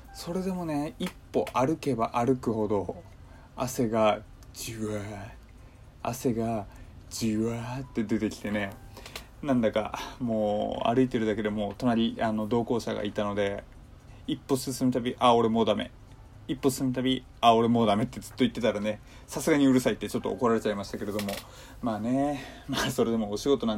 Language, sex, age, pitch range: Japanese, male, 20-39, 105-130 Hz